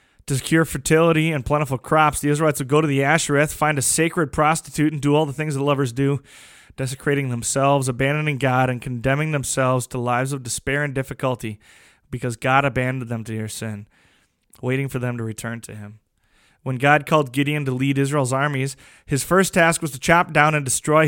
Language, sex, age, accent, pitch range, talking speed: English, male, 20-39, American, 130-150 Hz, 195 wpm